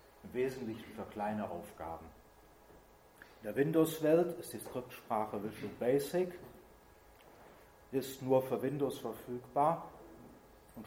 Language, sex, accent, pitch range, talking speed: German, male, German, 105-140 Hz, 105 wpm